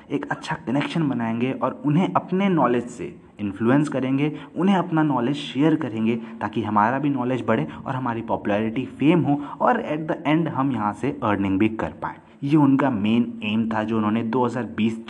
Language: Hindi